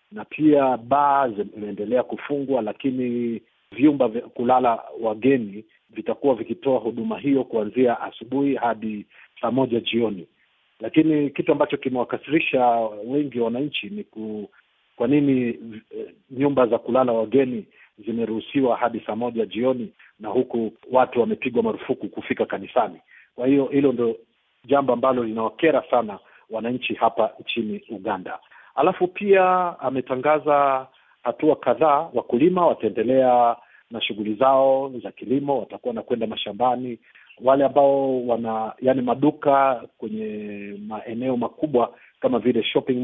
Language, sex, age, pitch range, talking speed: Swahili, male, 50-69, 115-135 Hz, 120 wpm